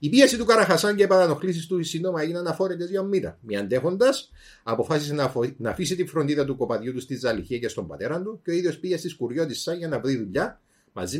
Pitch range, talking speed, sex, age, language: 130-170 Hz, 215 wpm, male, 30-49, Greek